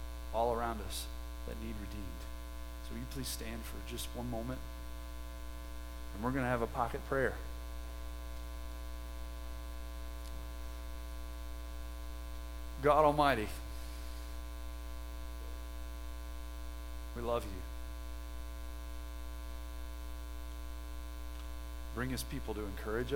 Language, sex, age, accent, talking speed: English, male, 40-59, American, 85 wpm